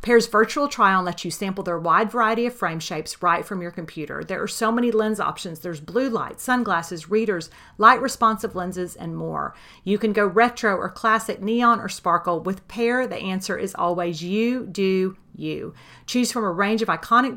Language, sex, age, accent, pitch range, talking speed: English, female, 40-59, American, 175-230 Hz, 195 wpm